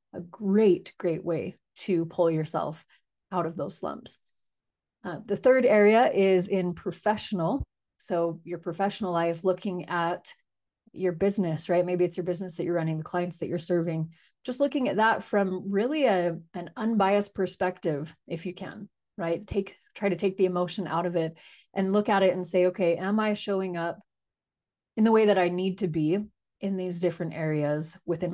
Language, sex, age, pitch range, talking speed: English, female, 30-49, 170-200 Hz, 180 wpm